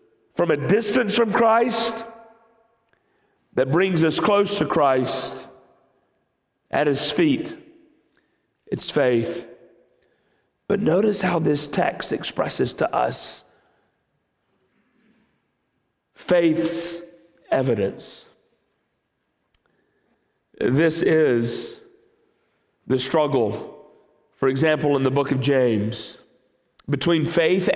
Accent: American